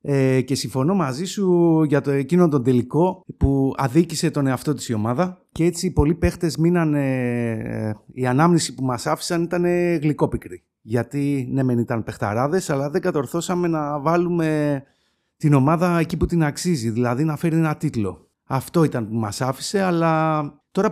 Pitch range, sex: 115-160 Hz, male